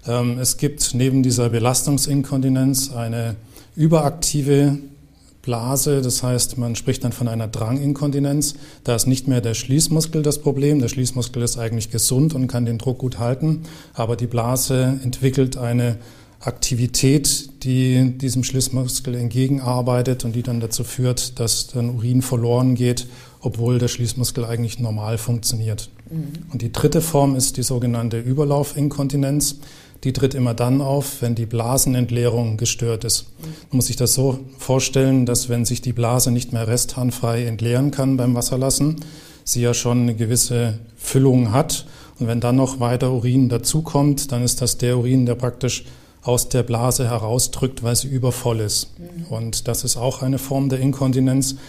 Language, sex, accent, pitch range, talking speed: German, male, German, 120-135 Hz, 155 wpm